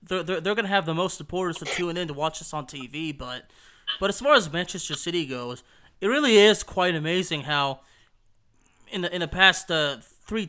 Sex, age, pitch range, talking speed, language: male, 20-39, 140-180 Hz, 215 wpm, English